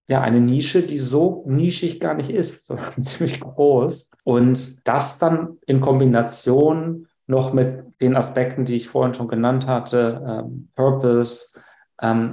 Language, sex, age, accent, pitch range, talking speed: German, male, 40-59, German, 120-140 Hz, 145 wpm